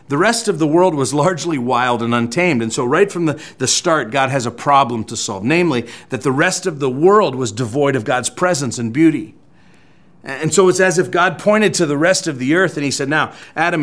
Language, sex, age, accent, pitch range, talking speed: English, male, 40-59, American, 135-170 Hz, 240 wpm